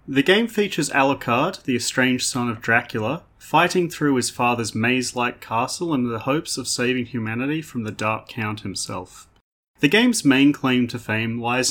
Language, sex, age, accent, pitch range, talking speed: English, male, 30-49, Australian, 110-140 Hz, 170 wpm